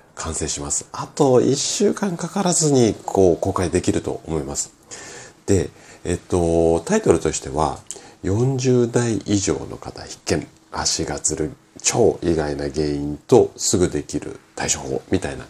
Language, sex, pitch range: Japanese, male, 75-115 Hz